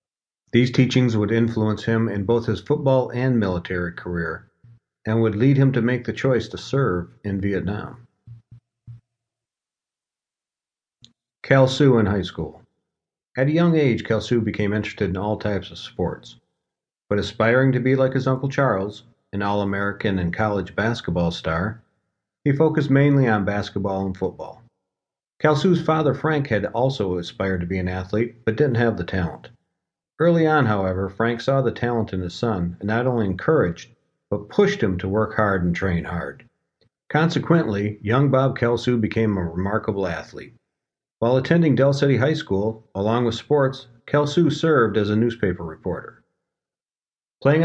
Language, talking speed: English, 160 wpm